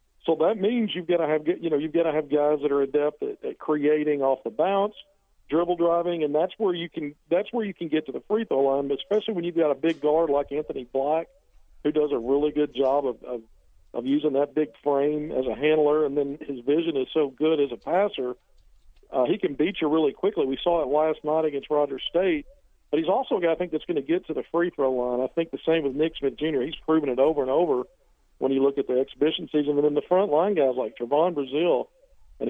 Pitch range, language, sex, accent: 140-165 Hz, English, male, American